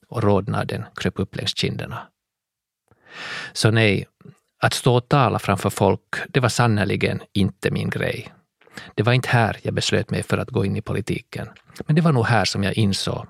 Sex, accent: male, Finnish